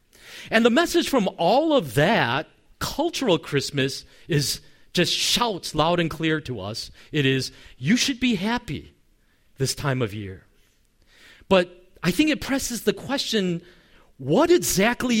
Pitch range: 120-195 Hz